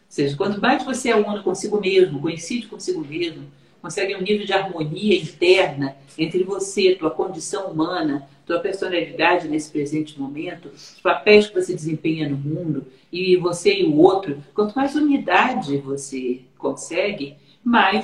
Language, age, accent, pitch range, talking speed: Portuguese, 50-69, Brazilian, 160-225 Hz, 155 wpm